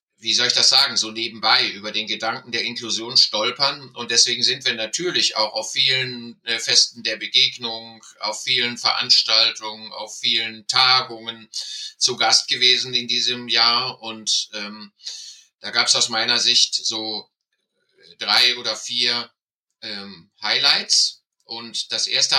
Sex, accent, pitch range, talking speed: male, German, 110-130 Hz, 140 wpm